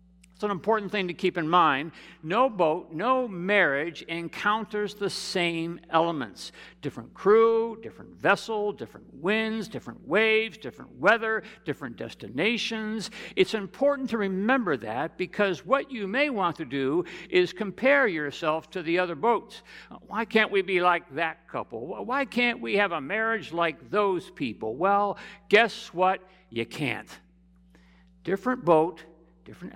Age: 60-79